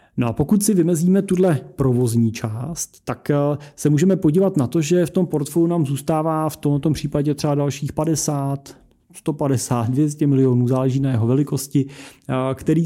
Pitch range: 120-150 Hz